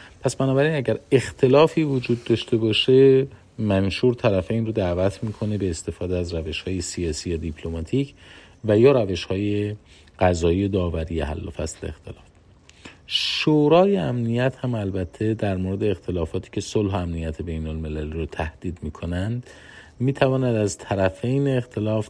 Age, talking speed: 50-69, 130 wpm